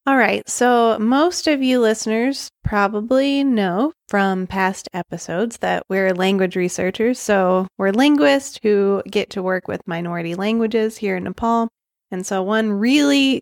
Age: 20-39